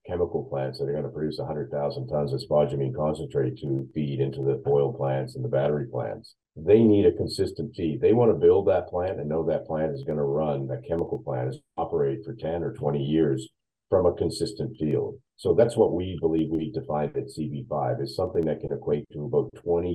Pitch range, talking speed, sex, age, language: 70-95 Hz, 215 wpm, male, 40-59, English